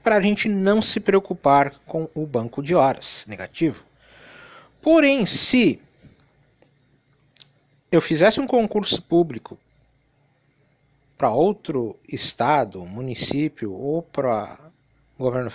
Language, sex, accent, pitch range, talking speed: Portuguese, male, Brazilian, 140-185 Hz, 105 wpm